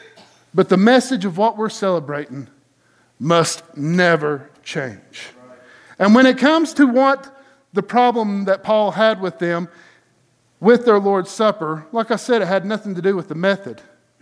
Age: 50-69